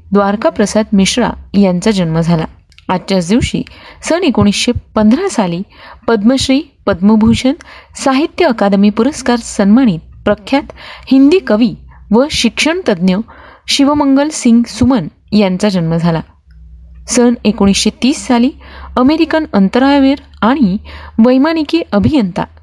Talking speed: 95 wpm